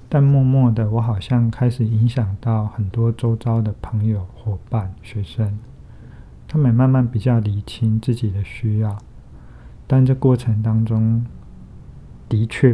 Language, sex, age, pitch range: Chinese, male, 50-69, 105-120 Hz